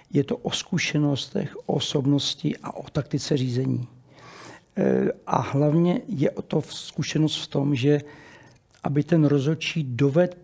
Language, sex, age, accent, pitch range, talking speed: Czech, male, 60-79, native, 140-160 Hz, 125 wpm